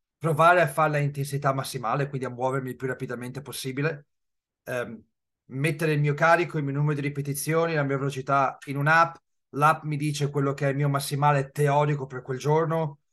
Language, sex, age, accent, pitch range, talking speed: Italian, male, 30-49, native, 130-160 Hz, 185 wpm